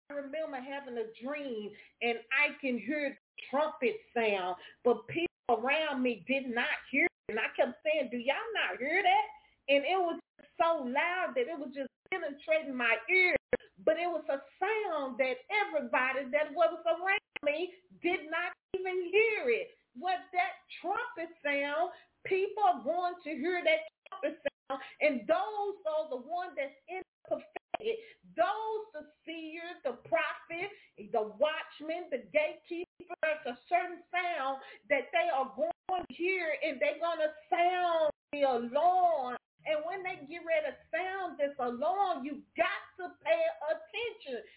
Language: English